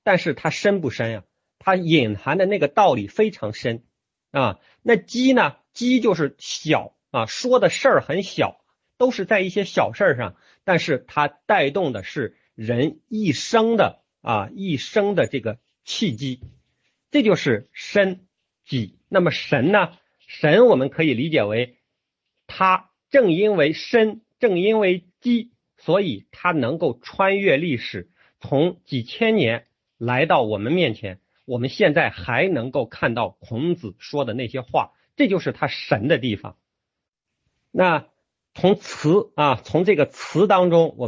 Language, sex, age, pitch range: Chinese, male, 50-69, 125-195 Hz